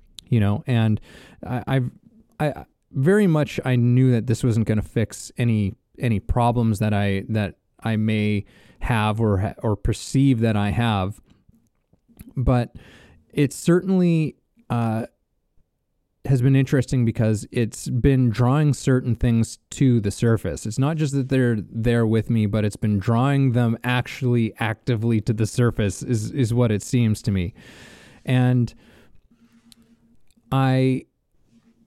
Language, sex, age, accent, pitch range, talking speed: English, male, 20-39, American, 110-135 Hz, 140 wpm